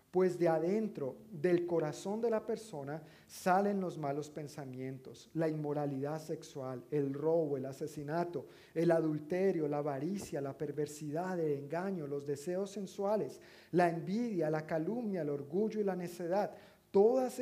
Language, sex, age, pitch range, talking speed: Spanish, male, 50-69, 145-175 Hz, 140 wpm